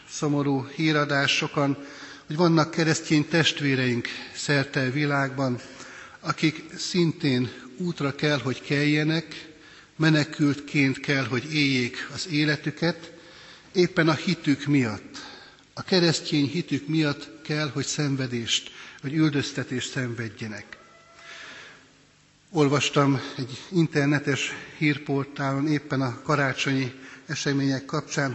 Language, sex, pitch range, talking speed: Hungarian, male, 135-155 Hz, 95 wpm